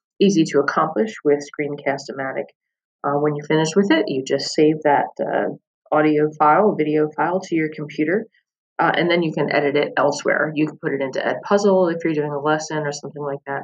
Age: 30-49